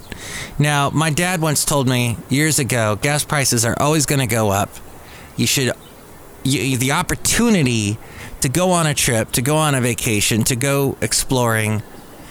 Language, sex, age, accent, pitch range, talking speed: English, male, 30-49, American, 110-140 Hz, 160 wpm